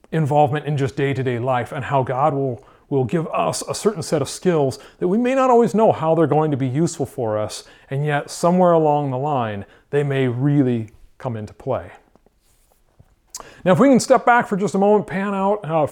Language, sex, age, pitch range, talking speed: English, male, 40-59, 150-195 Hz, 210 wpm